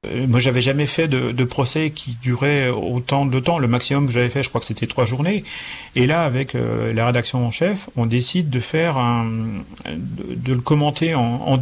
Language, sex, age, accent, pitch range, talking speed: French, male, 40-59, French, 120-145 Hz, 215 wpm